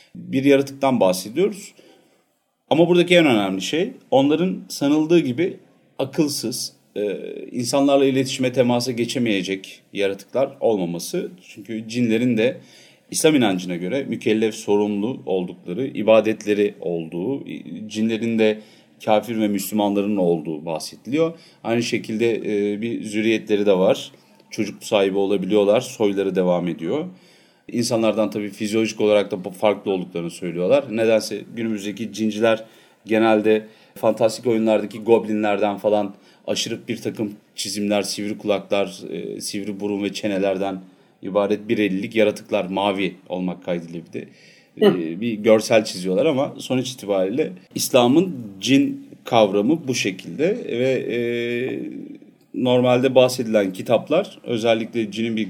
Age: 40-59